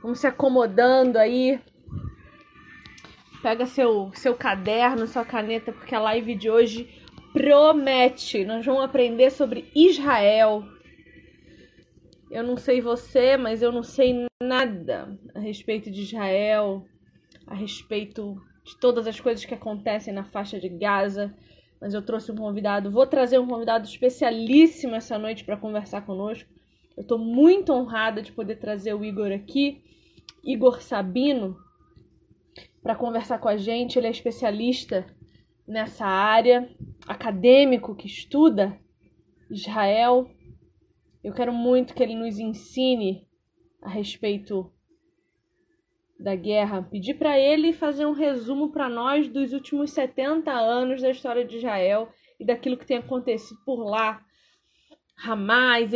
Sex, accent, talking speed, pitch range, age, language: female, Brazilian, 130 wpm, 215-260 Hz, 20-39, Portuguese